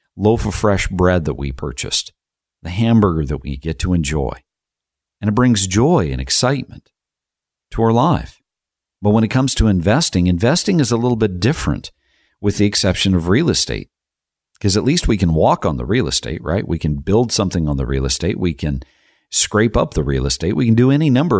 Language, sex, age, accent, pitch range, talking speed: English, male, 50-69, American, 85-115 Hz, 200 wpm